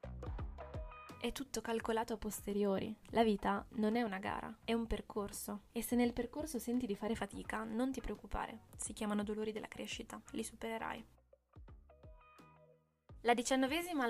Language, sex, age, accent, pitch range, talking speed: Italian, female, 20-39, native, 210-240 Hz, 145 wpm